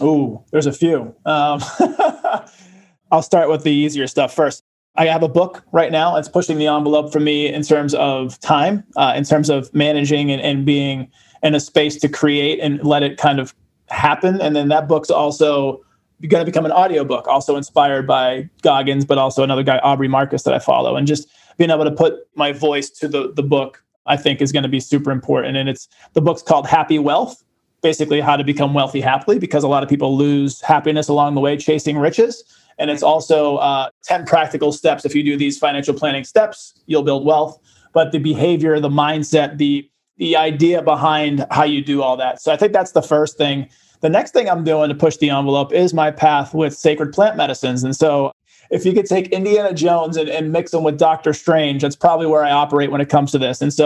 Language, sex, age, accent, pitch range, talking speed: English, male, 20-39, American, 140-160 Hz, 220 wpm